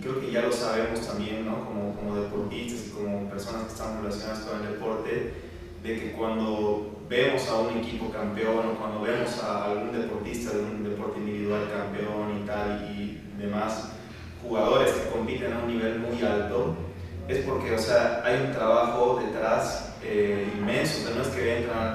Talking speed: 165 wpm